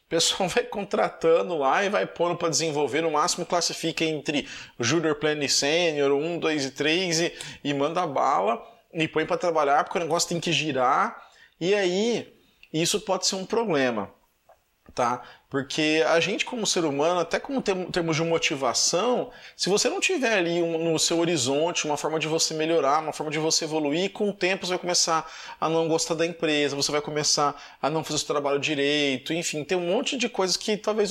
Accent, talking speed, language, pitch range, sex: Brazilian, 200 wpm, Portuguese, 145-180 Hz, male